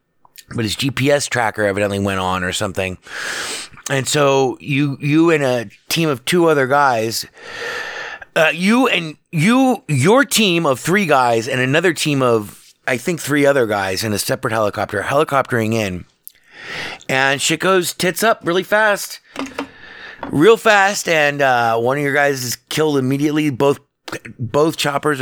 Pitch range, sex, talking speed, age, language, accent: 120-160 Hz, male, 155 wpm, 30-49, English, American